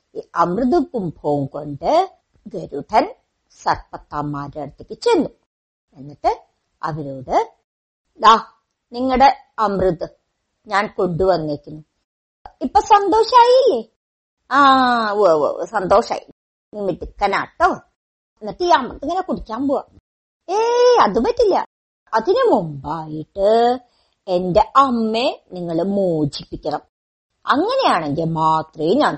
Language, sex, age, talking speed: Malayalam, male, 50-69, 80 wpm